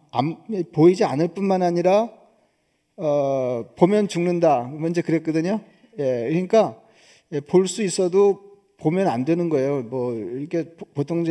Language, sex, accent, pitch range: Korean, male, native, 150-175 Hz